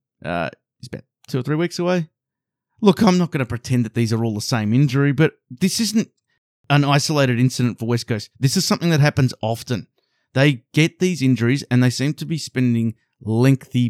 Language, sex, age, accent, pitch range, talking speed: English, male, 30-49, Australian, 120-155 Hz, 205 wpm